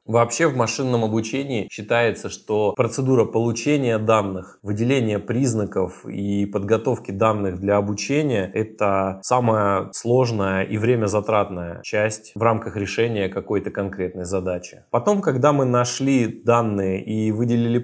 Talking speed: 120 wpm